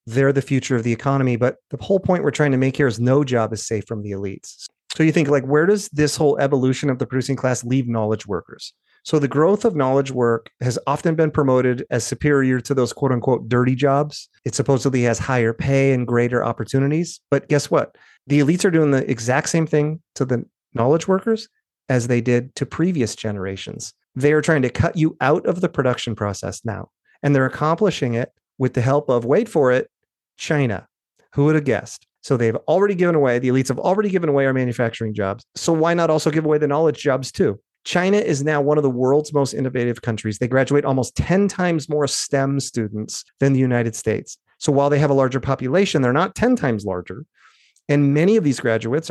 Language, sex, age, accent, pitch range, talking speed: English, male, 30-49, American, 120-150 Hz, 215 wpm